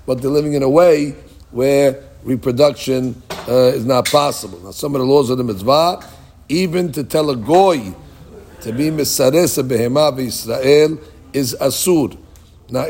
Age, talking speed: 60-79, 155 wpm